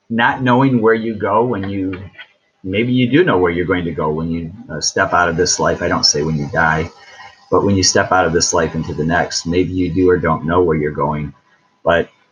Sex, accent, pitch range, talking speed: male, American, 80-100 Hz, 250 wpm